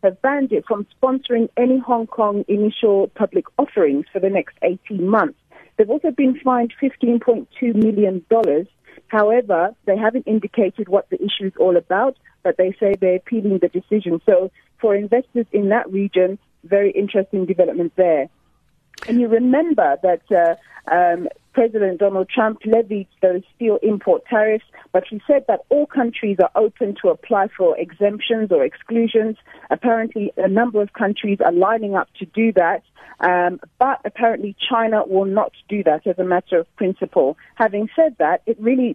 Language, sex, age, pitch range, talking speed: English, female, 40-59, 185-230 Hz, 165 wpm